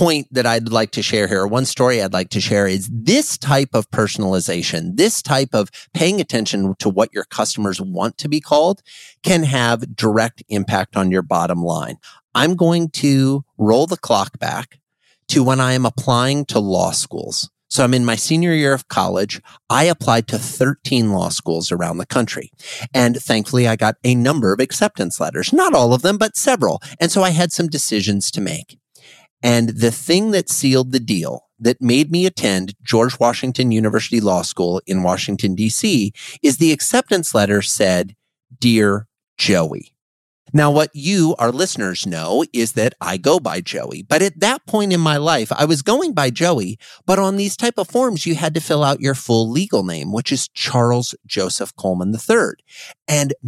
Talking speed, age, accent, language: 185 wpm, 40-59, American, English